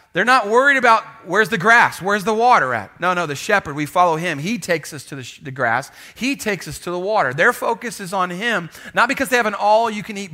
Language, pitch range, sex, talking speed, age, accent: English, 165-230 Hz, male, 245 wpm, 30-49, American